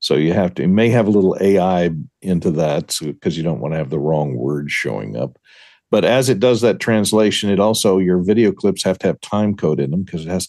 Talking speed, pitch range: 260 wpm, 75-105 Hz